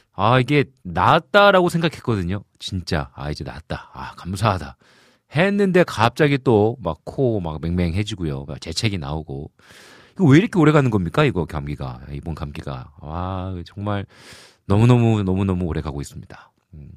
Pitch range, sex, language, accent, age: 85-125 Hz, male, Korean, native, 40-59